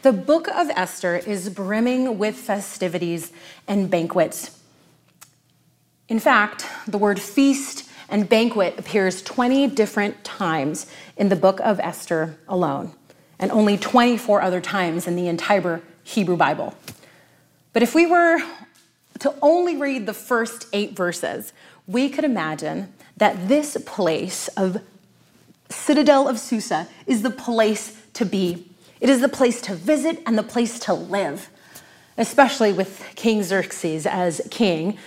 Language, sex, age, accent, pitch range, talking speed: English, female, 30-49, American, 185-245 Hz, 135 wpm